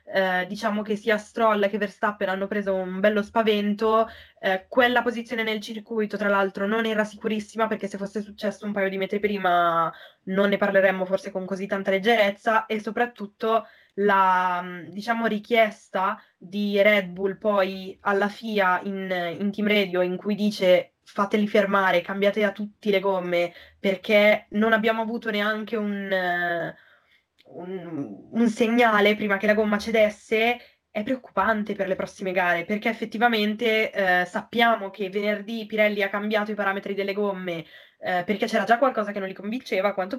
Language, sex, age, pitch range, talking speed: Italian, female, 10-29, 190-220 Hz, 160 wpm